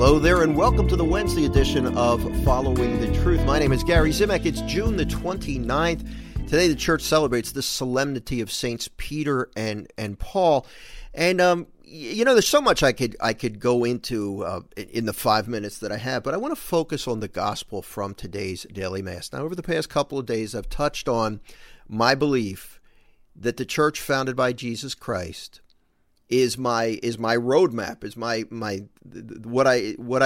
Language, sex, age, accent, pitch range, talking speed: English, male, 40-59, American, 115-160 Hz, 190 wpm